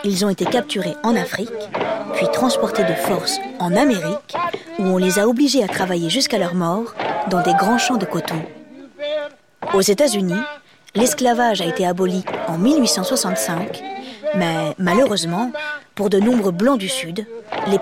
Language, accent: French, French